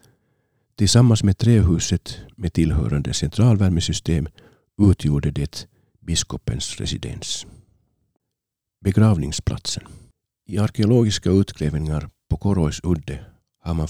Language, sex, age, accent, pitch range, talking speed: Finnish, male, 50-69, native, 80-110 Hz, 80 wpm